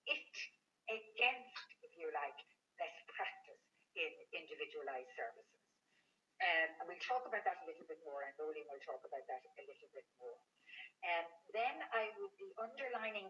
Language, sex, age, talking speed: English, female, 60-79, 165 wpm